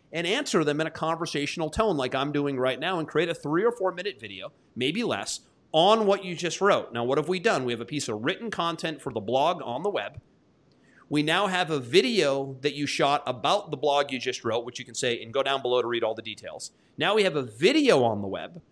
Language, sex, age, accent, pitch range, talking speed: English, male, 40-59, American, 125-165 Hz, 255 wpm